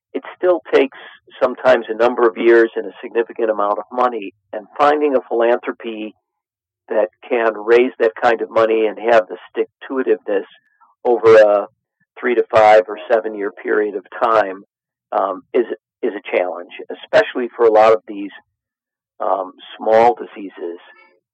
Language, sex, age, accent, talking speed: English, male, 50-69, American, 135 wpm